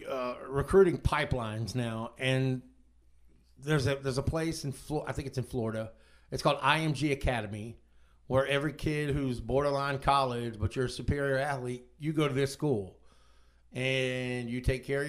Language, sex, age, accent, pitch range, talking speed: English, male, 50-69, American, 100-145 Hz, 165 wpm